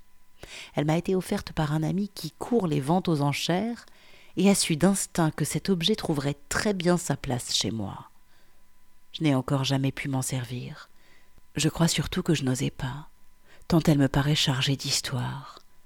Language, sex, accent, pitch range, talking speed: French, female, French, 130-175 Hz, 180 wpm